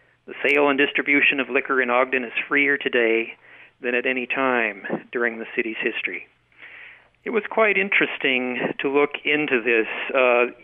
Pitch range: 120-145 Hz